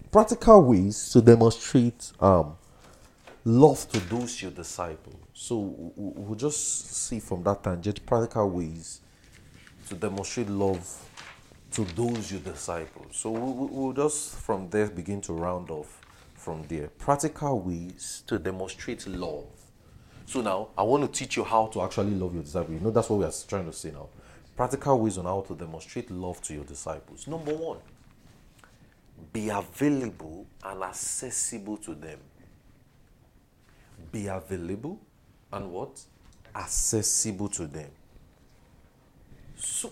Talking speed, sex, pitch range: 140 wpm, male, 90-125 Hz